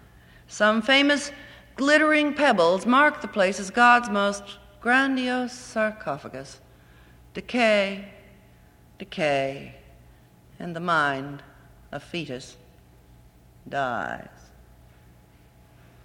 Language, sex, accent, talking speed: English, female, American, 75 wpm